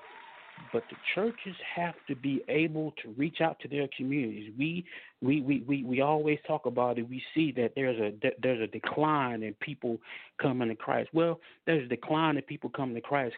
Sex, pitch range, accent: male, 115-145 Hz, American